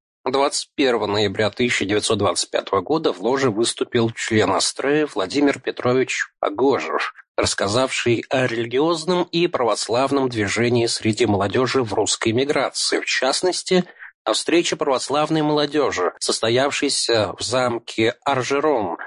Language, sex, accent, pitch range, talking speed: Russian, male, native, 125-185 Hz, 105 wpm